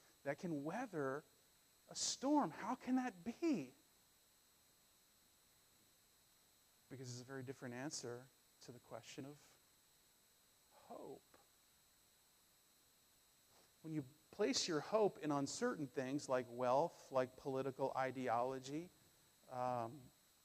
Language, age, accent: English, 40-59, American